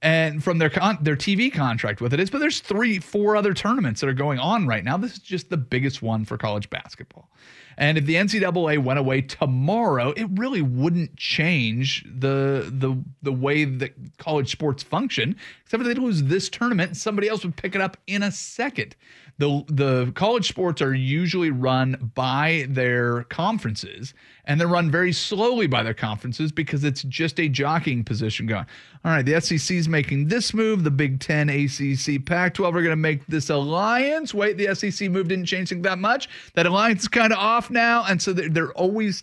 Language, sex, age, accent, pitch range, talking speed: English, male, 30-49, American, 130-185 Hz, 195 wpm